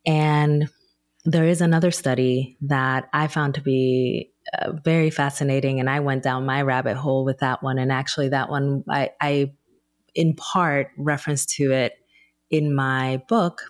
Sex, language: female, English